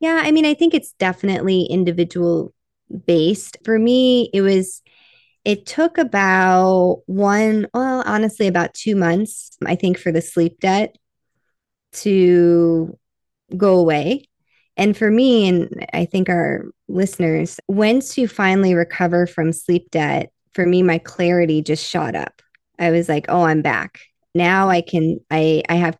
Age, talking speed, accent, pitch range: 20-39, 150 wpm, American, 165-195 Hz